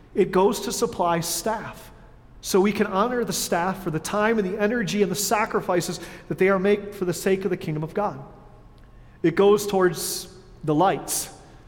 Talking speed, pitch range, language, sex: 190 wpm, 170-215 Hz, English, male